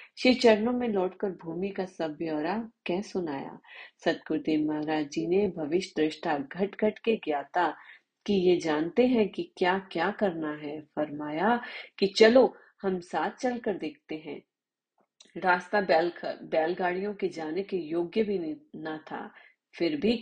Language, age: Hindi, 40-59